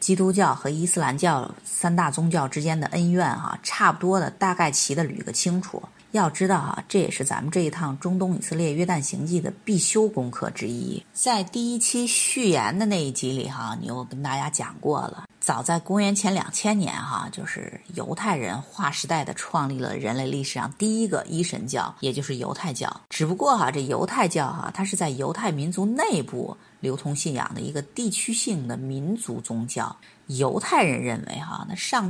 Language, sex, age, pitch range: Chinese, female, 30-49, 145-200 Hz